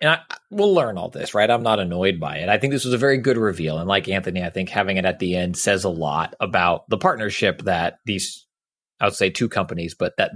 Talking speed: 260 wpm